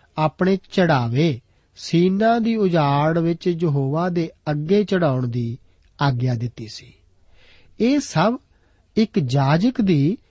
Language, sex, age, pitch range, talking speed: Punjabi, male, 50-69, 125-185 Hz, 110 wpm